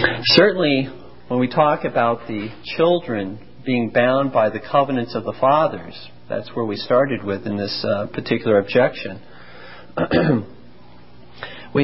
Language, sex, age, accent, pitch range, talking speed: English, male, 50-69, American, 100-135 Hz, 130 wpm